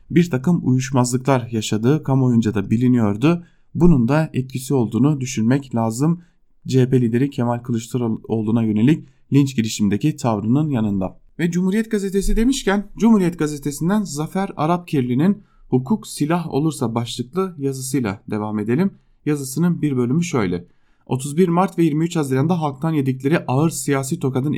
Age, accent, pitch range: 30-49, Turkish, 125-160 Hz